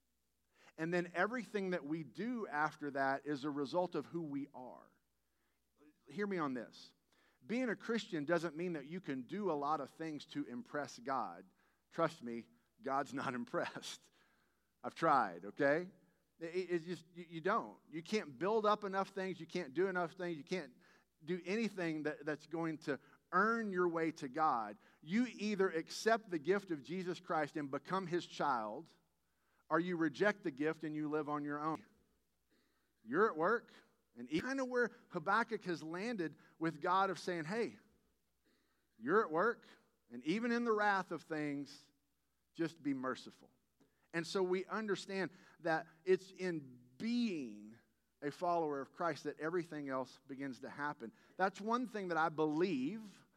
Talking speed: 165 wpm